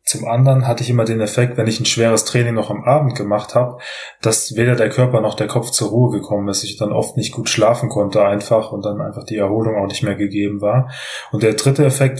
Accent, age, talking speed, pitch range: German, 20-39, 245 wpm, 105-125 Hz